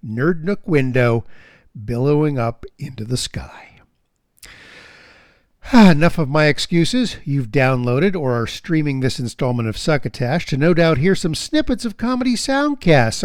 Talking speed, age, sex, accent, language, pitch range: 135 wpm, 50-69, male, American, English, 130-200 Hz